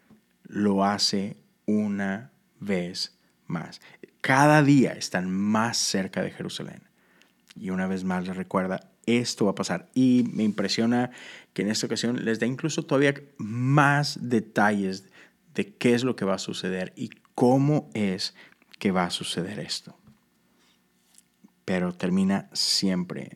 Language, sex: Spanish, male